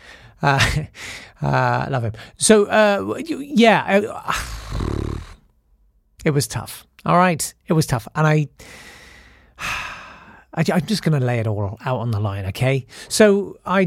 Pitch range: 125-185 Hz